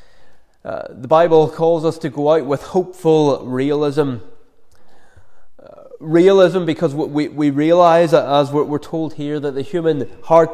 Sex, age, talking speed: male, 20-39, 155 wpm